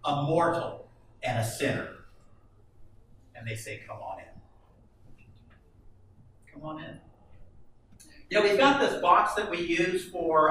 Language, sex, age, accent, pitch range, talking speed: English, male, 50-69, American, 115-155 Hz, 145 wpm